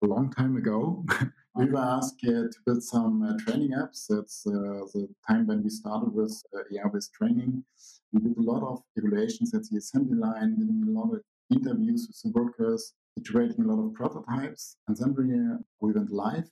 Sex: male